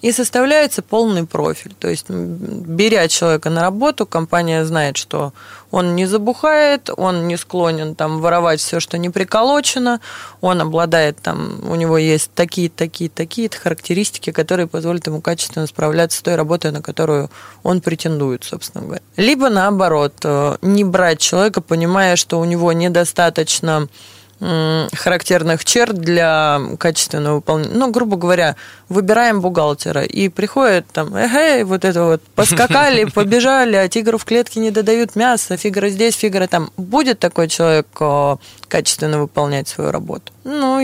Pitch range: 160-205 Hz